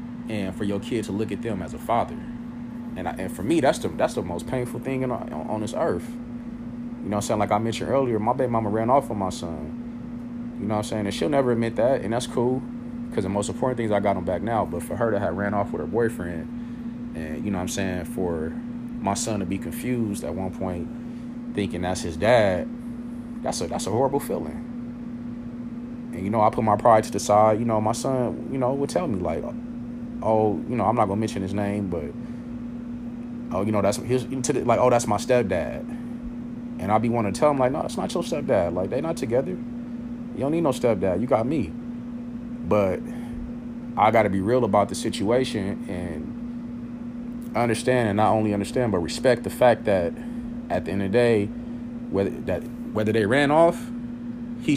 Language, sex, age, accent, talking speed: English, male, 30-49, American, 220 wpm